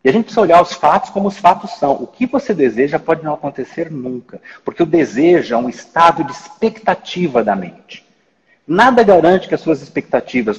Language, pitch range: Portuguese, 125-190 Hz